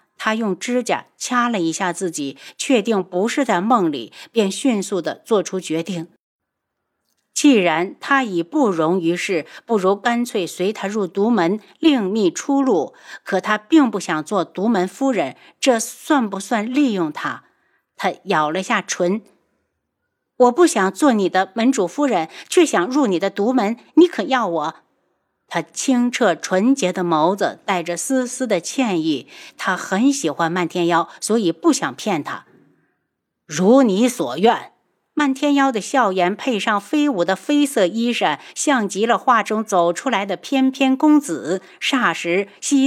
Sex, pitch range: female, 185-270 Hz